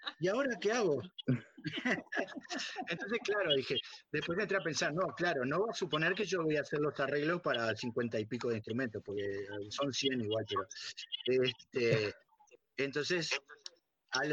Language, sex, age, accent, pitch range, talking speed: Spanish, male, 30-49, Argentinian, 120-175 Hz, 165 wpm